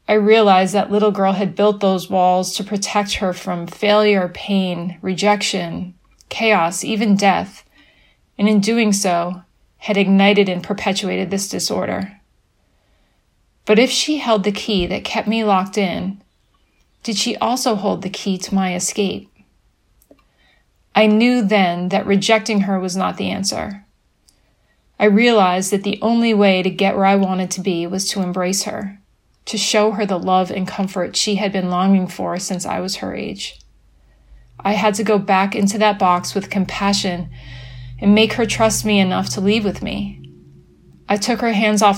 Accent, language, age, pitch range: American, English, 30-49, 185-210 Hz